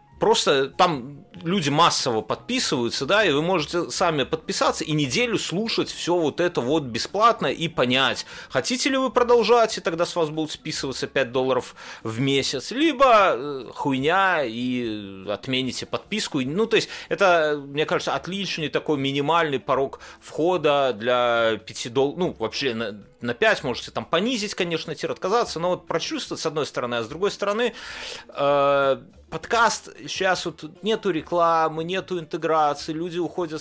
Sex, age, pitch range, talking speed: male, 30-49, 140-190 Hz, 150 wpm